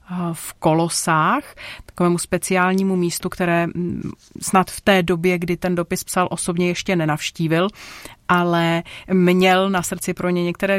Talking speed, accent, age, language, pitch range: 135 wpm, native, 30-49, Czech, 170-205 Hz